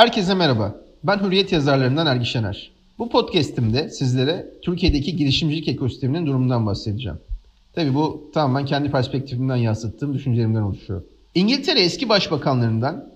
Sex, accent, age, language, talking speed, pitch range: male, native, 40-59, Turkish, 120 wpm, 120-180 Hz